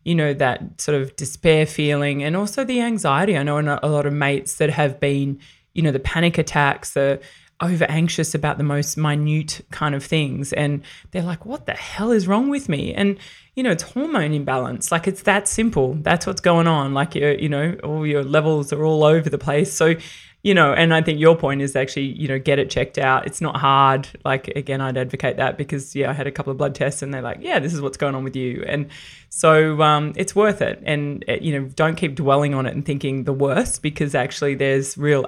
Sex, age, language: female, 20-39, English